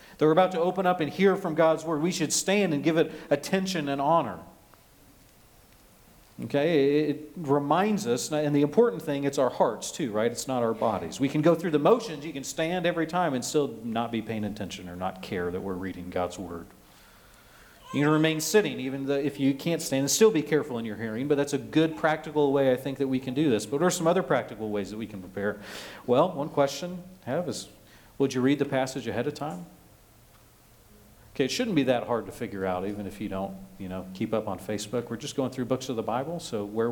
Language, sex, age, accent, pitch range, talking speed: English, male, 40-59, American, 110-155 Hz, 240 wpm